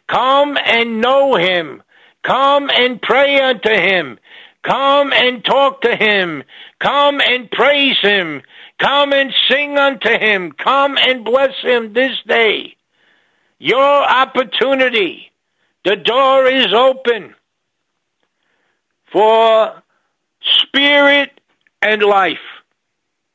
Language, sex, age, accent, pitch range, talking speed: English, male, 60-79, American, 220-285 Hz, 100 wpm